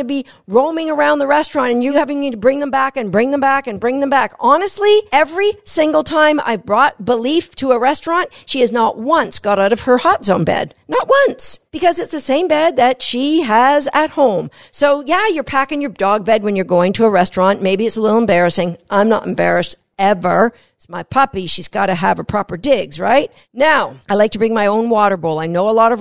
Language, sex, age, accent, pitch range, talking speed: English, female, 50-69, American, 200-280 Hz, 235 wpm